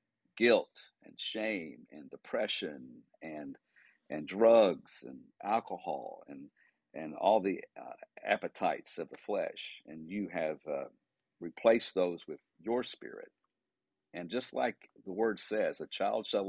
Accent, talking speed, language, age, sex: American, 135 wpm, English, 50-69, male